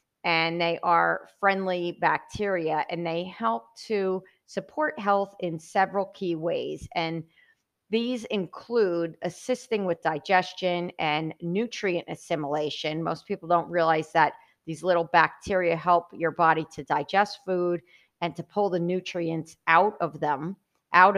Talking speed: 135 wpm